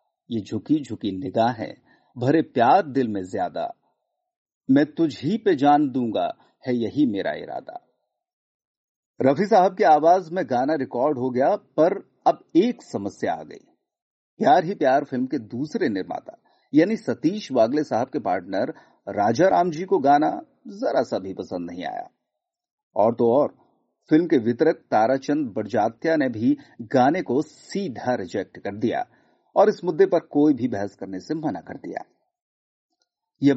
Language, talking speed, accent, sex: Hindi, 155 wpm, native, male